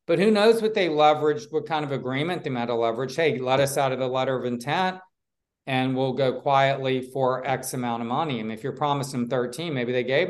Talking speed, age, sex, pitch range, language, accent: 235 wpm, 40-59, male, 130-175 Hz, English, American